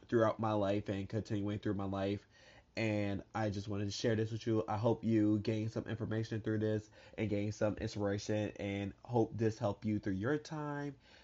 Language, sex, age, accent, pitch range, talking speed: English, male, 20-39, American, 110-140 Hz, 200 wpm